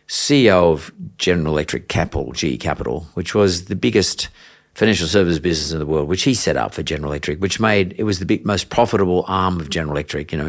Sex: male